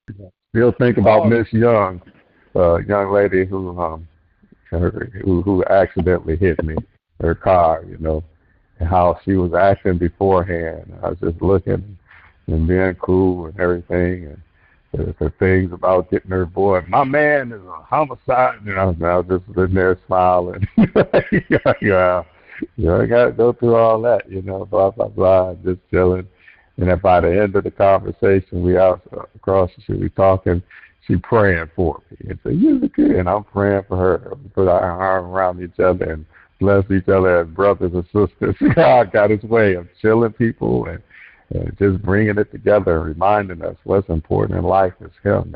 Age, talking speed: 60-79, 180 wpm